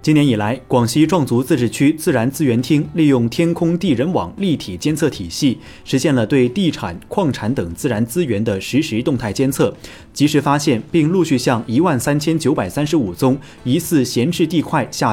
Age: 30-49